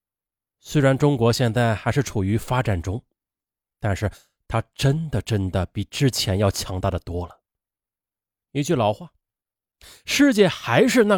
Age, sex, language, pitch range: 30-49, male, Chinese, 95-140 Hz